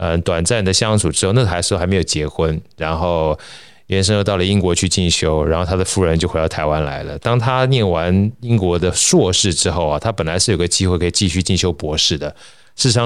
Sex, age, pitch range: male, 20-39, 80-100 Hz